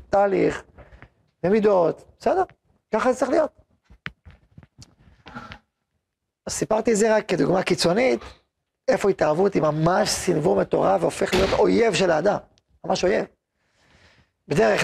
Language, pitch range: Hebrew, 165-230 Hz